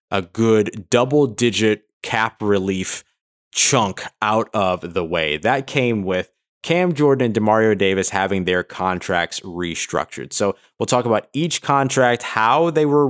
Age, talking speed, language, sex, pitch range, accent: 20-39, 145 wpm, English, male, 105-140 Hz, American